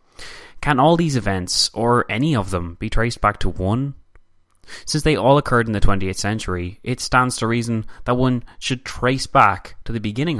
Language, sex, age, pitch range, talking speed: English, male, 20-39, 90-125 Hz, 190 wpm